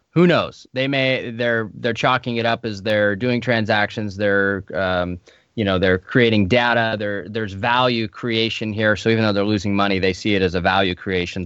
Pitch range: 110-140 Hz